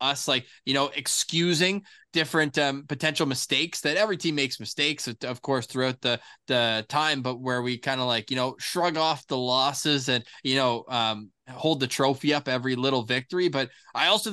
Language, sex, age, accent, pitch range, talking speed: English, male, 20-39, American, 130-155 Hz, 195 wpm